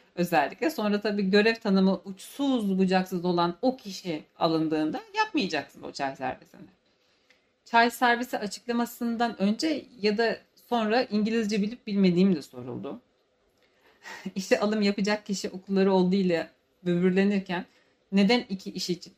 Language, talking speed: Turkish, 120 wpm